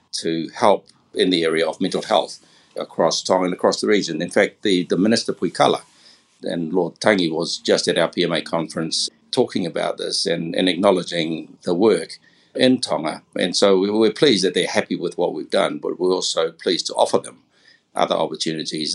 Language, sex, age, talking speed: English, male, 60-79, 185 wpm